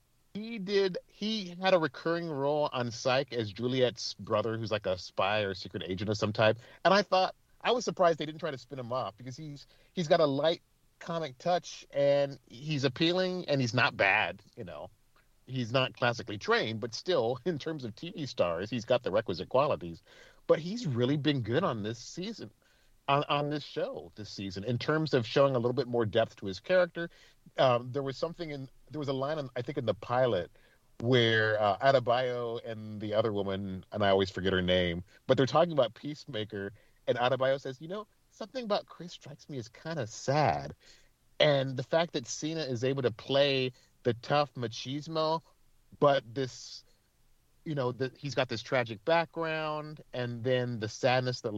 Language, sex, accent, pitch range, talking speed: English, male, American, 115-155 Hz, 195 wpm